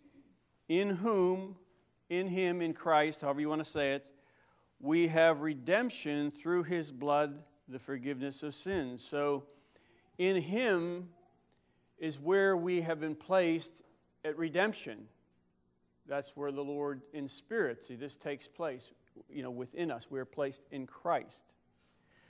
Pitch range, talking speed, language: 135-175 Hz, 140 wpm, English